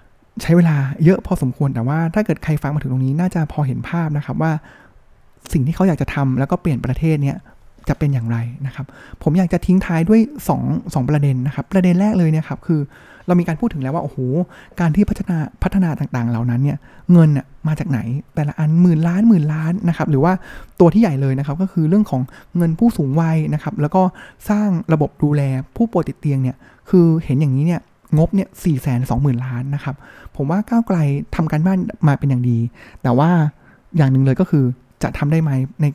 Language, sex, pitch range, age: Thai, male, 135-175 Hz, 20-39